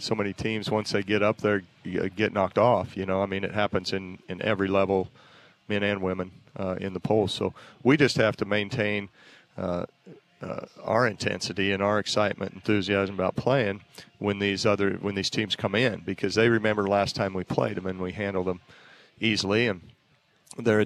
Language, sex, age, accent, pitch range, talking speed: English, male, 40-59, American, 95-110 Hz, 200 wpm